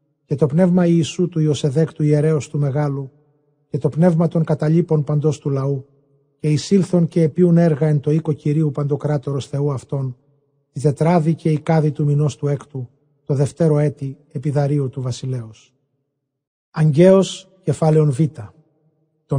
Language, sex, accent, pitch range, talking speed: Greek, male, native, 140-155 Hz, 150 wpm